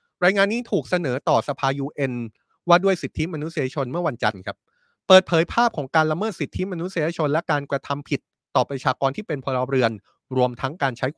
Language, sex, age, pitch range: Thai, male, 20-39, 130-175 Hz